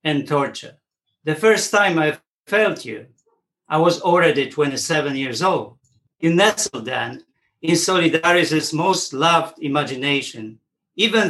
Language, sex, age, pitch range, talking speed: English, male, 50-69, 130-170 Hz, 120 wpm